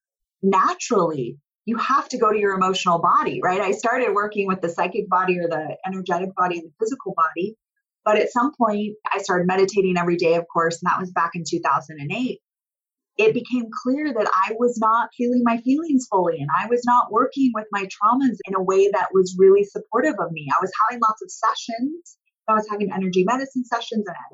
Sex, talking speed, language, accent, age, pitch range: female, 205 wpm, English, American, 30-49, 170-220 Hz